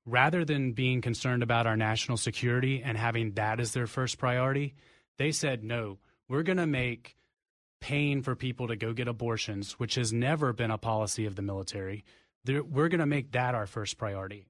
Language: English